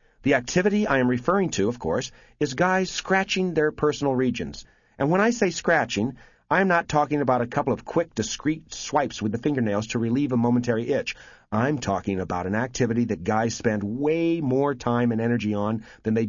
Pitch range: 120-170 Hz